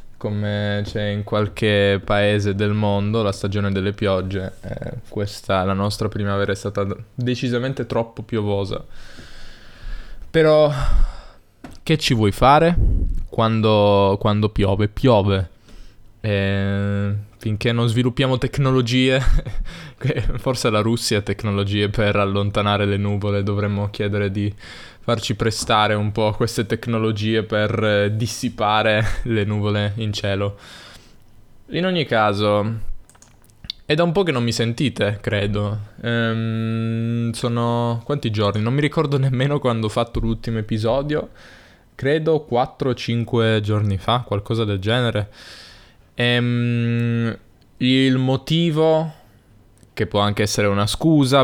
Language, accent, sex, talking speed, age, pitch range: Italian, native, male, 115 wpm, 20-39, 105-125 Hz